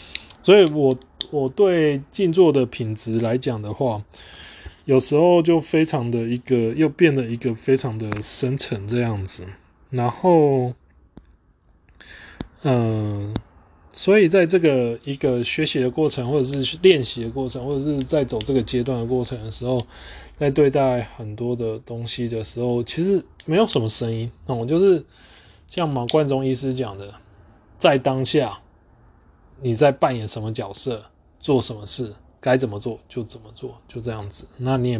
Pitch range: 105-135 Hz